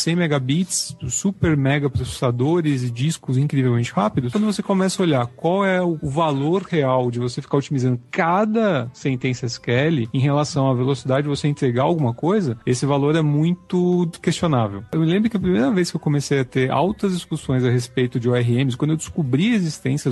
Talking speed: 190 wpm